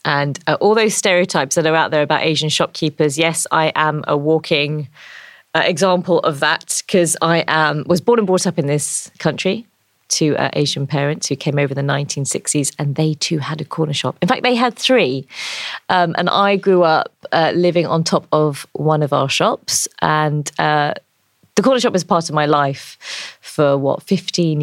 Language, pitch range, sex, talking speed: English, 150-185 Hz, female, 195 wpm